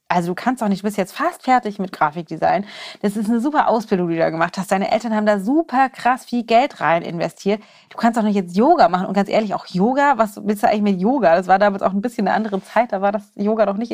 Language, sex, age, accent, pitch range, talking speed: German, female, 30-49, German, 200-240 Hz, 280 wpm